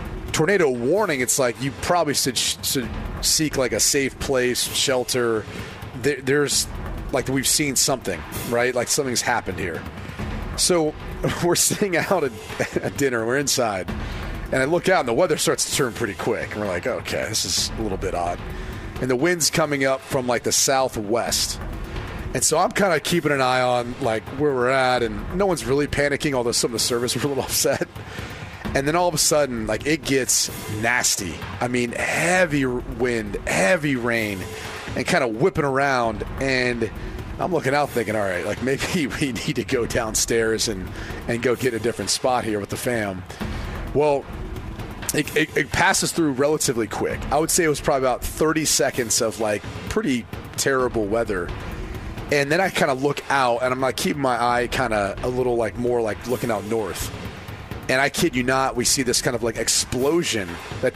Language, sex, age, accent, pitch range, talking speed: English, male, 30-49, American, 110-140 Hz, 195 wpm